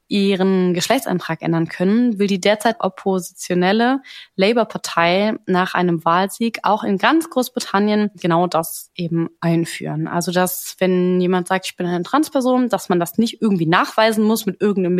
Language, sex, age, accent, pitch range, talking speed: German, female, 20-39, German, 180-235 Hz, 150 wpm